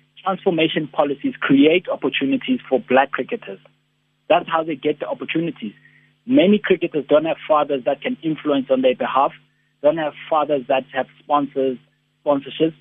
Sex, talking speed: male, 145 wpm